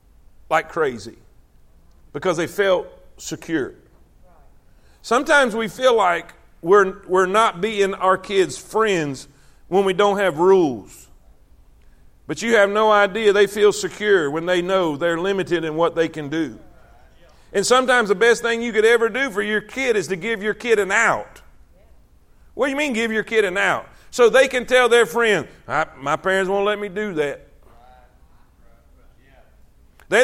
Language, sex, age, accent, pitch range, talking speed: English, male, 50-69, American, 170-235 Hz, 165 wpm